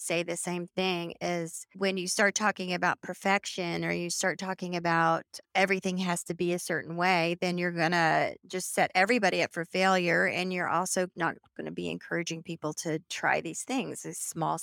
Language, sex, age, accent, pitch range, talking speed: English, female, 40-59, American, 170-195 Hz, 195 wpm